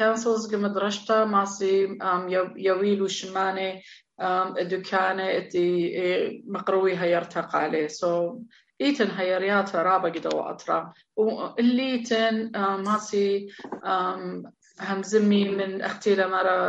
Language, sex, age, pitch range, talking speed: English, female, 30-49, 190-225 Hz, 50 wpm